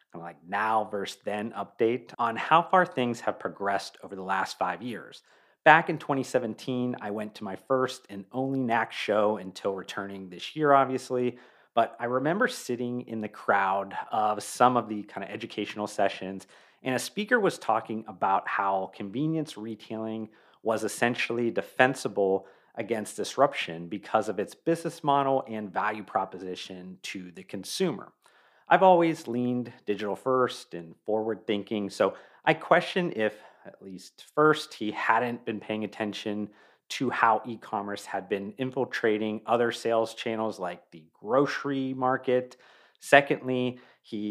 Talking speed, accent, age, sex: 145 wpm, American, 40-59, male